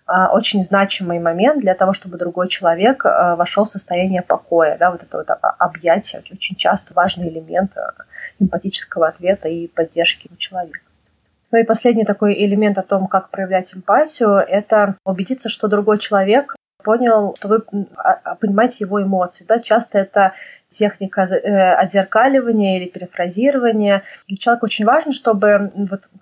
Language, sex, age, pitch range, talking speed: Russian, female, 30-49, 190-220 Hz, 140 wpm